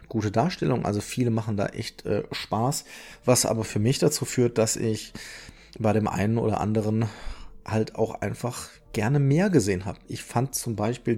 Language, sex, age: German, male, 30-49